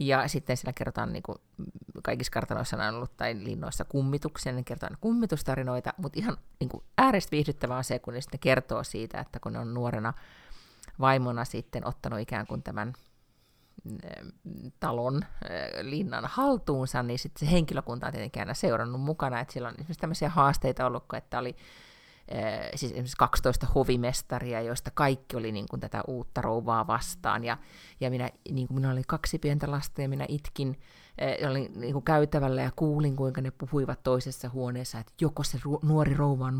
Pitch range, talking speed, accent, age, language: 125-145 Hz, 170 wpm, native, 30-49, Finnish